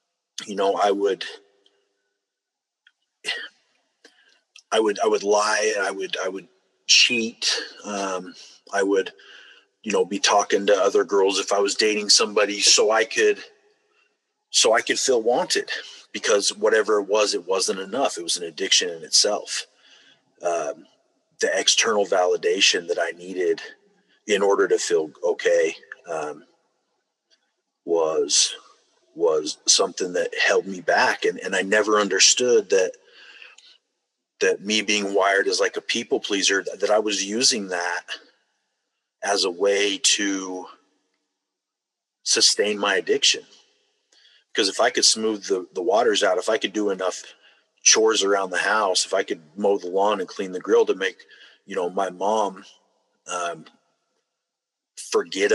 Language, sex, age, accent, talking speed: English, male, 30-49, American, 145 wpm